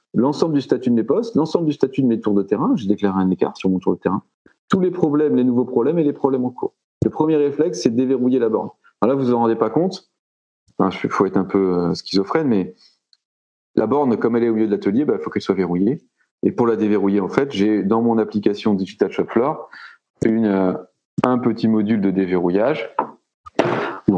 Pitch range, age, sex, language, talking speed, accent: 100-130 Hz, 30-49, male, French, 230 wpm, French